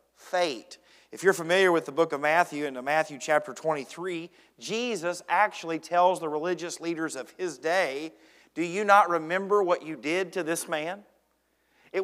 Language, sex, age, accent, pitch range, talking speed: English, male, 40-59, American, 165-205 Hz, 165 wpm